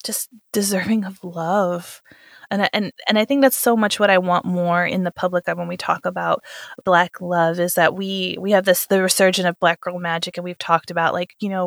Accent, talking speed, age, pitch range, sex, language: American, 225 wpm, 20-39, 175-195 Hz, female, English